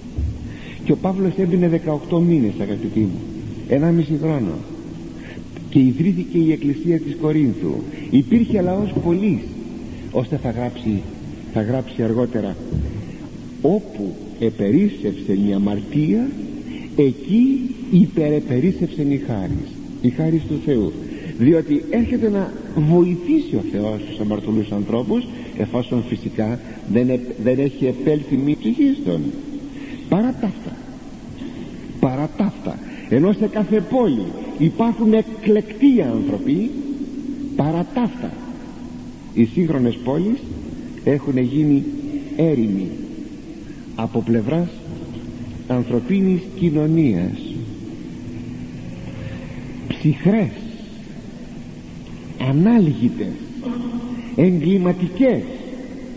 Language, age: Greek, 60-79